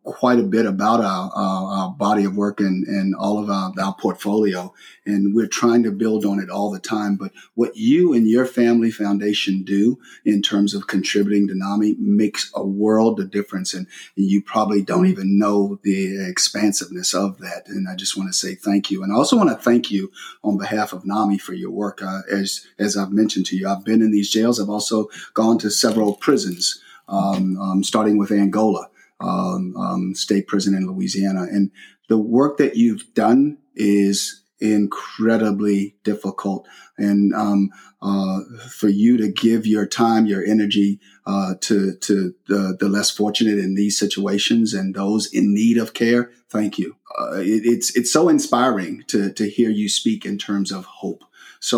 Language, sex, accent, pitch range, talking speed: English, male, American, 100-115 Hz, 190 wpm